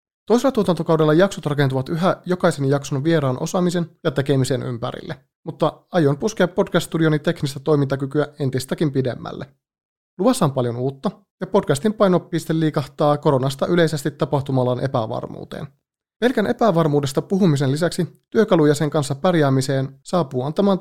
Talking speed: 120 wpm